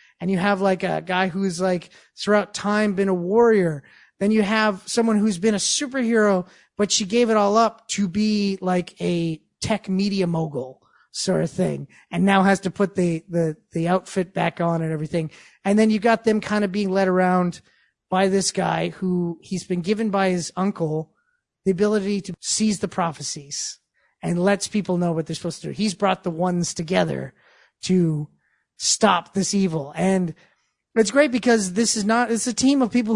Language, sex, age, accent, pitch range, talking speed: English, male, 30-49, American, 175-215 Hz, 190 wpm